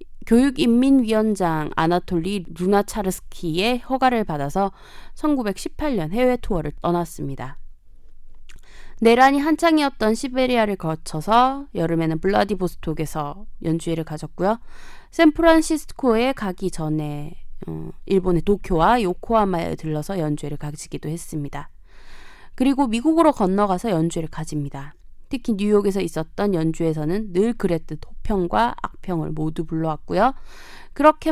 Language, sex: Korean, female